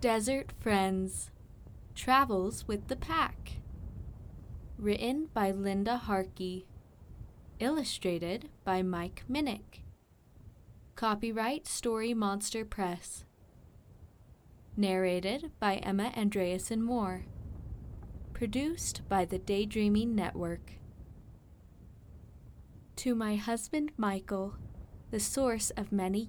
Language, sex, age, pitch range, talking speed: English, female, 20-39, 180-225 Hz, 80 wpm